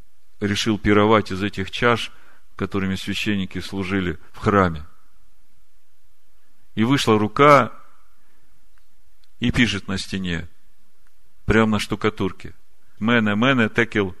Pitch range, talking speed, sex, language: 95-110 Hz, 95 wpm, male, Russian